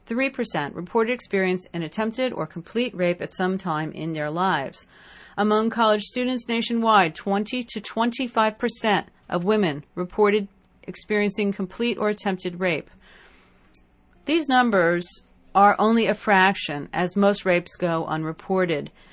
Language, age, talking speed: English, 40-59, 125 wpm